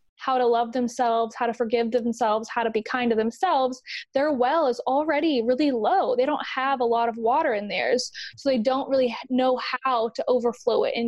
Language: English